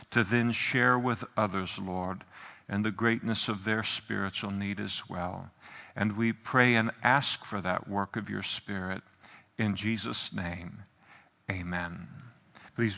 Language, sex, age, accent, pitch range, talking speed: English, male, 50-69, American, 110-130 Hz, 145 wpm